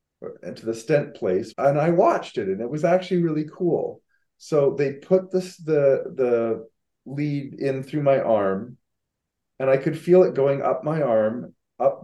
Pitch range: 120-150 Hz